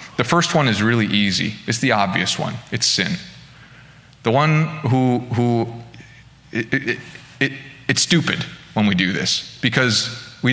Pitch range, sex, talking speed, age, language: 105-130 Hz, male, 155 wpm, 20-39, English